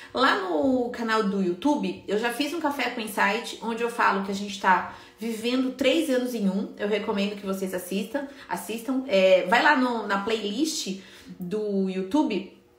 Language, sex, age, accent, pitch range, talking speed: Portuguese, female, 30-49, Brazilian, 200-250 Hz, 170 wpm